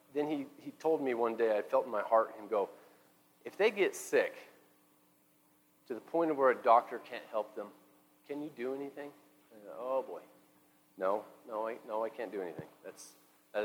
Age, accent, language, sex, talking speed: 40-59, American, English, male, 200 wpm